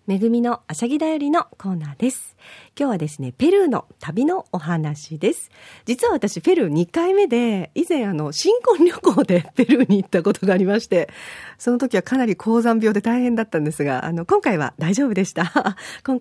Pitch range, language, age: 170-275 Hz, Japanese, 40-59